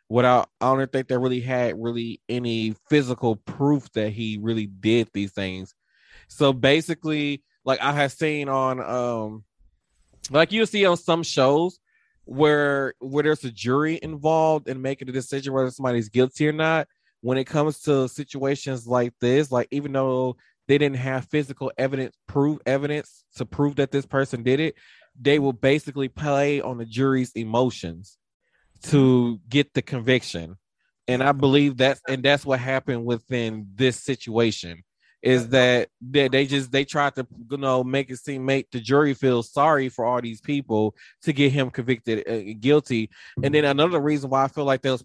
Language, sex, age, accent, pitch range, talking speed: English, male, 20-39, American, 115-140 Hz, 175 wpm